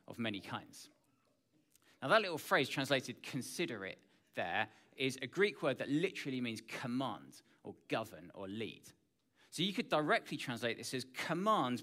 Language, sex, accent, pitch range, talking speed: English, male, British, 120-170 Hz, 155 wpm